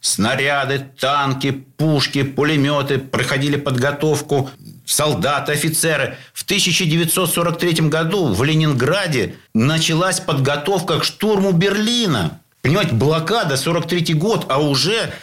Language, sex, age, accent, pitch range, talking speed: Russian, male, 50-69, native, 130-165 Hz, 95 wpm